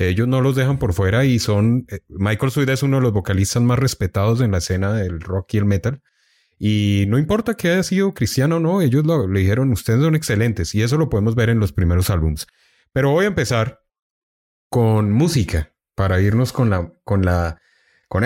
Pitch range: 95-130 Hz